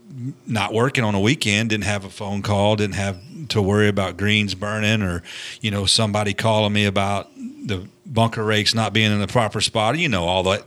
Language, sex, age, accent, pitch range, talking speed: English, male, 40-59, American, 95-115 Hz, 210 wpm